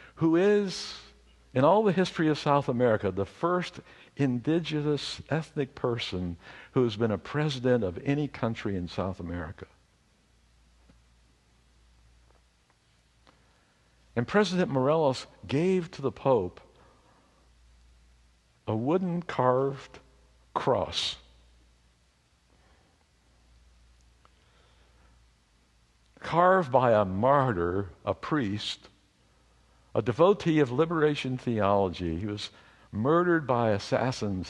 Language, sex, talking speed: English, male, 90 wpm